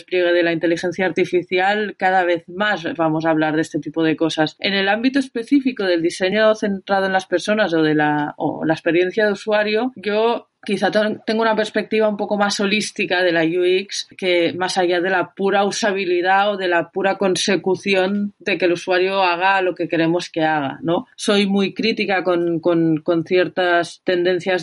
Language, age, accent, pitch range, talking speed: Spanish, 30-49, Spanish, 170-195 Hz, 190 wpm